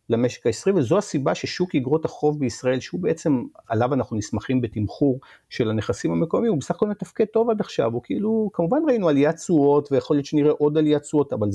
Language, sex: Hebrew, male